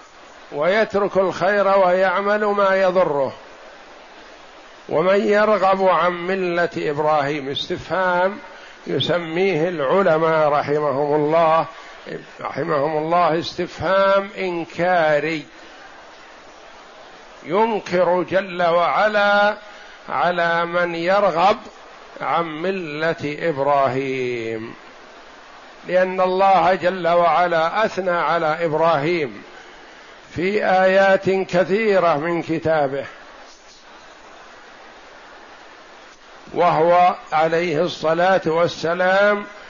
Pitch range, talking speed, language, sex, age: 160-190 Hz, 65 wpm, Arabic, male, 50-69